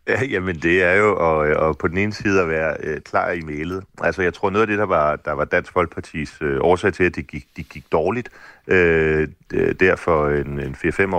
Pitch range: 80-100 Hz